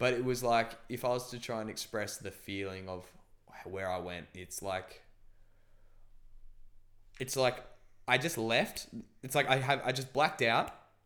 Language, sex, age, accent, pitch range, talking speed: English, male, 10-29, Australian, 100-125 Hz, 175 wpm